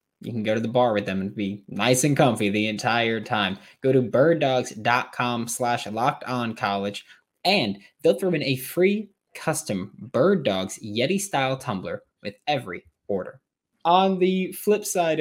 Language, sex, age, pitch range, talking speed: English, male, 20-39, 110-155 Hz, 165 wpm